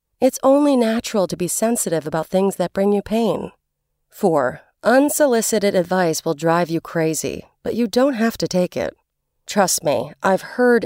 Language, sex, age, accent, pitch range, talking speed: English, female, 40-59, American, 175-240 Hz, 165 wpm